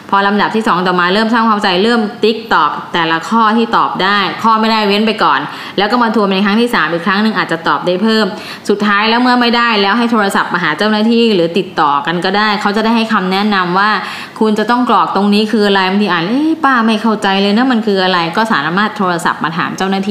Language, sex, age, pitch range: Thai, female, 20-39, 180-220 Hz